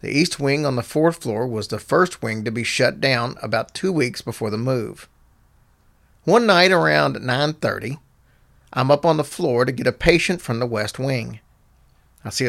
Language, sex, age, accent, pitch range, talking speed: English, male, 40-59, American, 115-160 Hz, 190 wpm